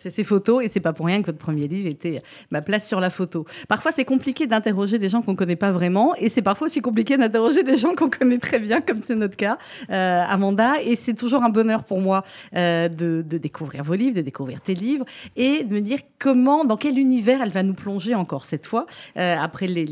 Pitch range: 180-240 Hz